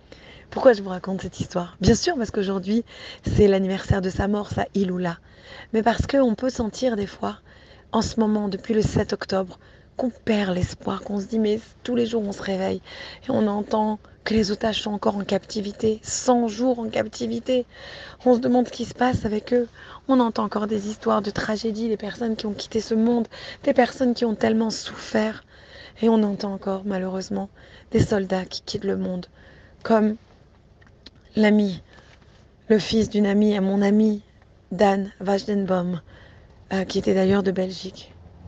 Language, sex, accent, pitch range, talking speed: French, female, French, 190-230 Hz, 180 wpm